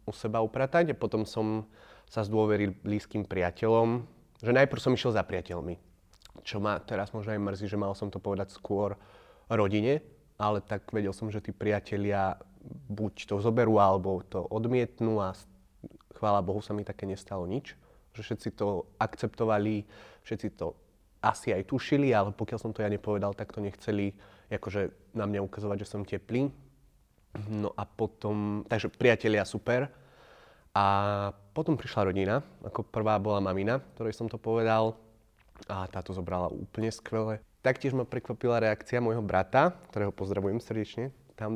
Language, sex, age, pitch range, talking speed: Slovak, male, 30-49, 100-115 Hz, 155 wpm